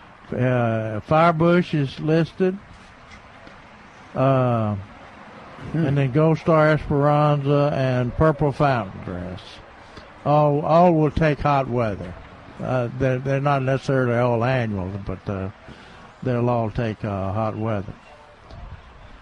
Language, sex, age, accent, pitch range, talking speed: English, male, 60-79, American, 120-145 Hz, 110 wpm